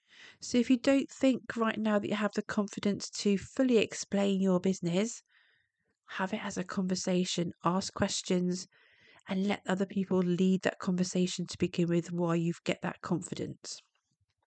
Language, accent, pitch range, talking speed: English, British, 180-220 Hz, 160 wpm